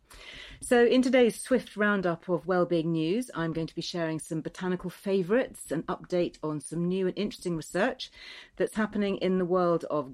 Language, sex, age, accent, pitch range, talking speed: English, female, 40-59, British, 145-195 Hz, 180 wpm